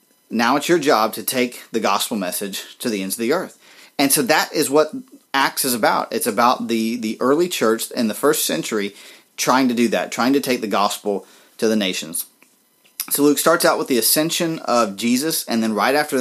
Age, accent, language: 30-49, American, English